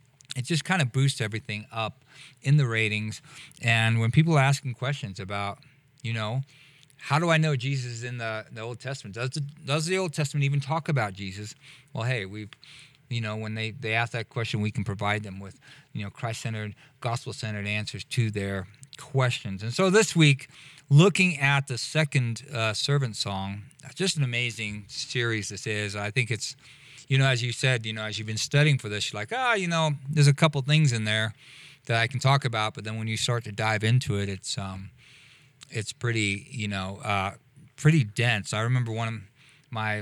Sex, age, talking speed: male, 40-59, 205 wpm